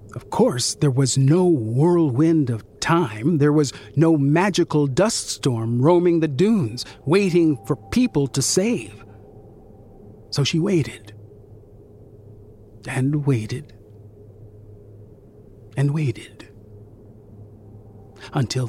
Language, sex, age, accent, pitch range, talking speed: English, male, 50-69, American, 105-150 Hz, 95 wpm